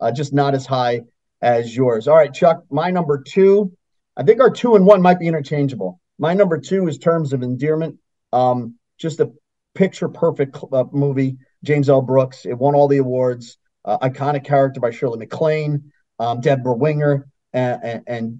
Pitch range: 125-160 Hz